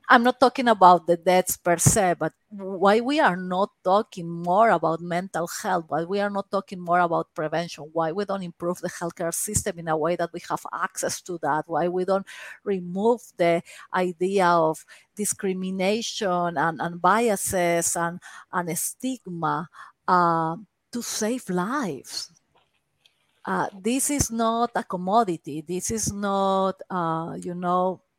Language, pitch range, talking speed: English, 170-205 Hz, 155 wpm